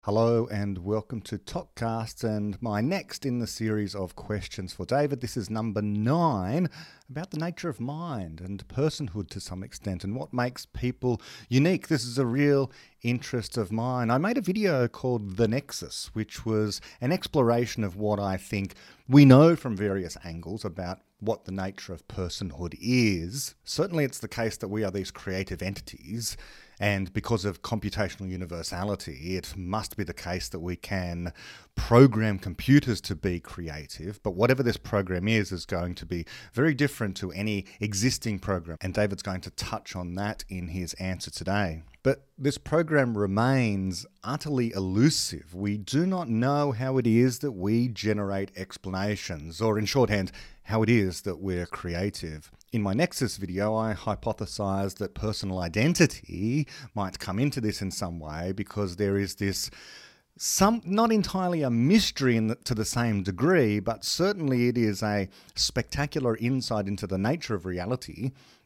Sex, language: male, English